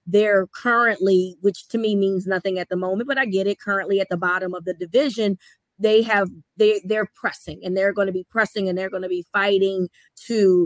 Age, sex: 20-39, female